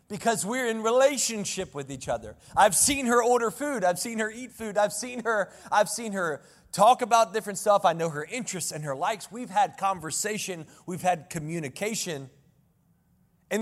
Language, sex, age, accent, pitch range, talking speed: English, male, 30-49, American, 165-220 Hz, 180 wpm